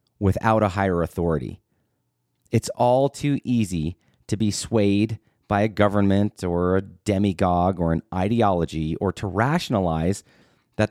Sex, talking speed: male, 130 wpm